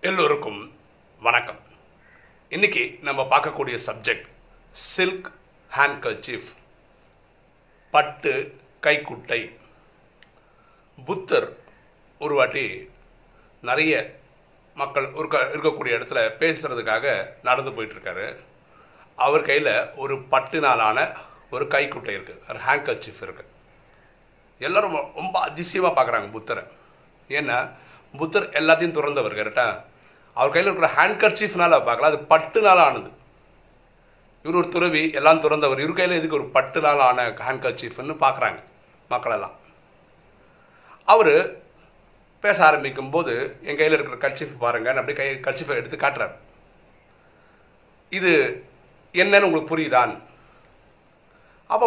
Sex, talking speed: male, 90 wpm